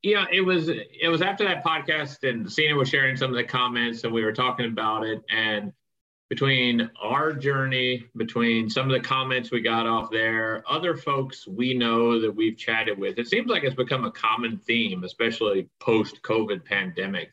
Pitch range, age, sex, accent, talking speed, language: 115-150 Hz, 40-59, male, American, 185 wpm, English